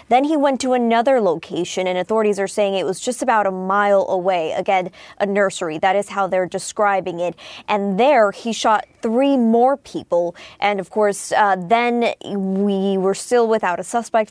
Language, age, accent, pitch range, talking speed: English, 20-39, American, 195-225 Hz, 185 wpm